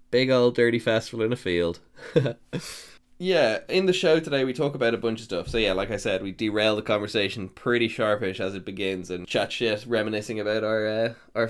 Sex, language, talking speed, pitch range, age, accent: male, English, 215 wpm, 90-110 Hz, 20-39, Irish